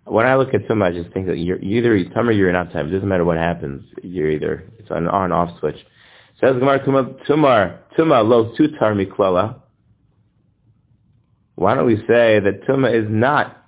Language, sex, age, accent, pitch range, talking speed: English, male, 30-49, American, 100-130 Hz, 185 wpm